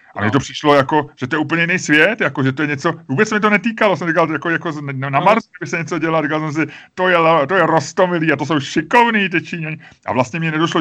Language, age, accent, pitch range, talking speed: Czech, 30-49, native, 130-155 Hz, 255 wpm